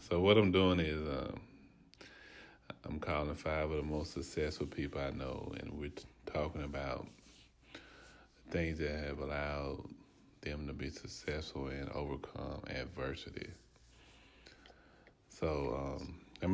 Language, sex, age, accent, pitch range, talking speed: English, male, 30-49, American, 70-80 Hz, 125 wpm